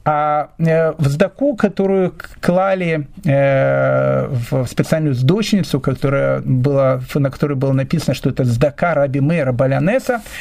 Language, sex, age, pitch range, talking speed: Russian, male, 40-59, 130-170 Hz, 100 wpm